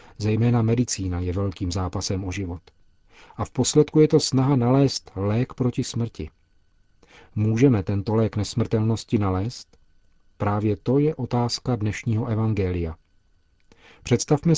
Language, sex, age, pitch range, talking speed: Czech, male, 40-59, 95-125 Hz, 120 wpm